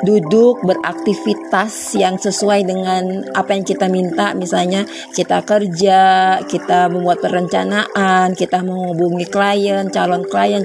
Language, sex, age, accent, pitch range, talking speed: Indonesian, female, 20-39, native, 175-200 Hz, 115 wpm